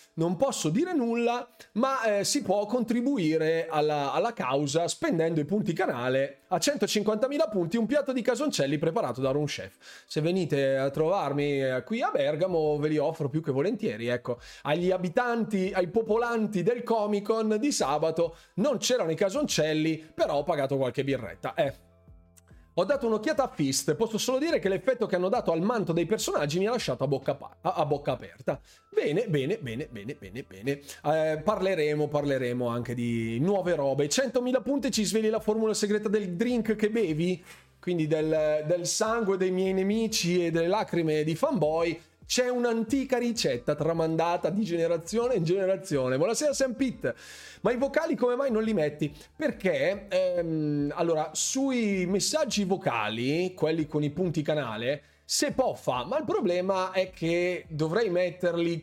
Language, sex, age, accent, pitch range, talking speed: Italian, male, 30-49, native, 150-220 Hz, 160 wpm